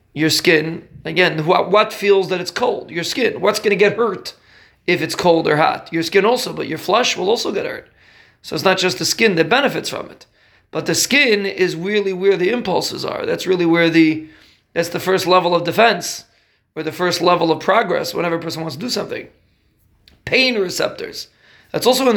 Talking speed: 210 wpm